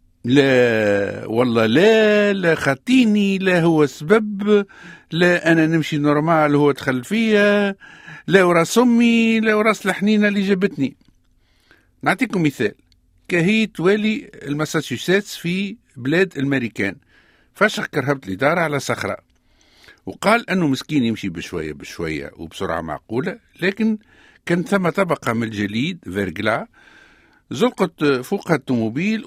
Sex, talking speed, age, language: male, 115 wpm, 60-79, English